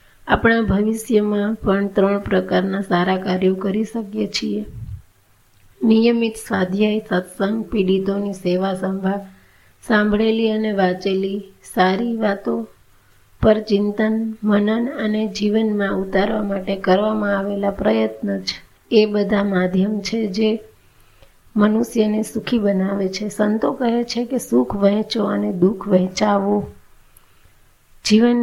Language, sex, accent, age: Gujarati, female, native, 30-49